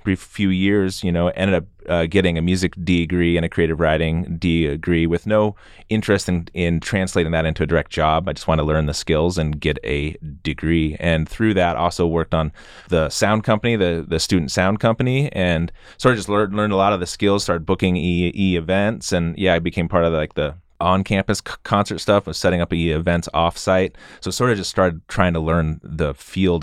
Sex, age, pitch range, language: male, 30-49, 85-95 Hz, English